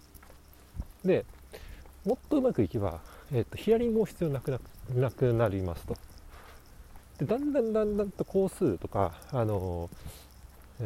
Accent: native